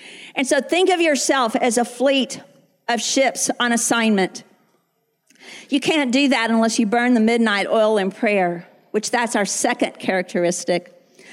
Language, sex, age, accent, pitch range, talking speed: English, female, 50-69, American, 220-265 Hz, 155 wpm